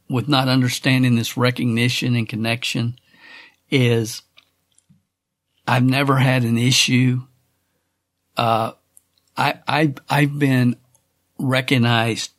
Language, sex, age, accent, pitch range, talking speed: English, male, 50-69, American, 110-125 Hz, 90 wpm